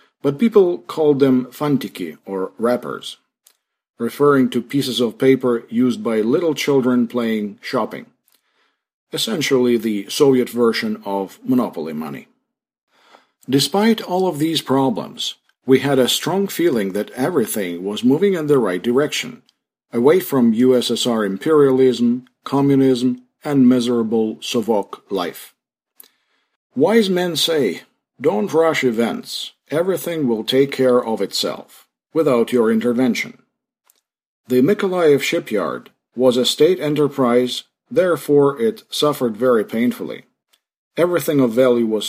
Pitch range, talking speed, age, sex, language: 120-150 Hz, 120 wpm, 50-69, male, English